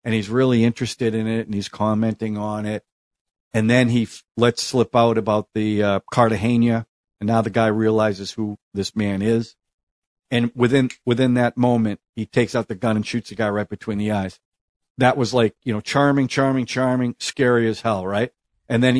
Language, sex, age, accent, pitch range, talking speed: English, male, 50-69, American, 110-130 Hz, 200 wpm